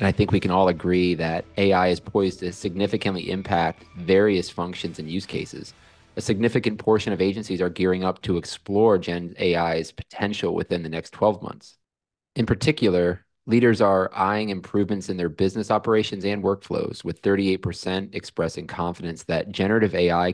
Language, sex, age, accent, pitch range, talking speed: English, male, 30-49, American, 90-105 Hz, 165 wpm